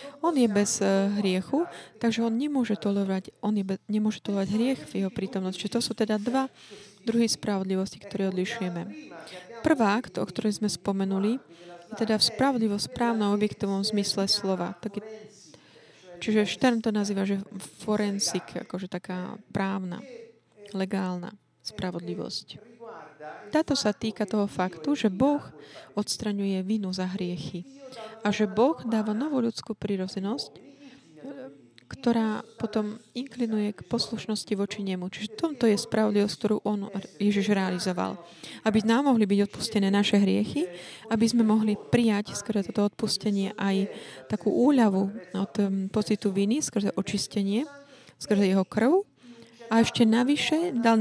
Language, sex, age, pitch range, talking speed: Slovak, female, 20-39, 195-230 Hz, 125 wpm